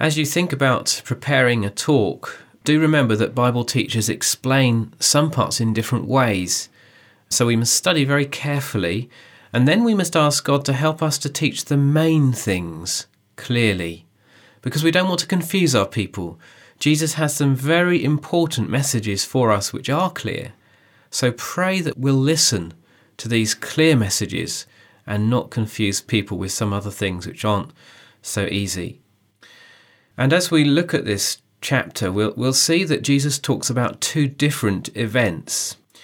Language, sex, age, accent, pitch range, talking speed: English, male, 30-49, British, 105-145 Hz, 160 wpm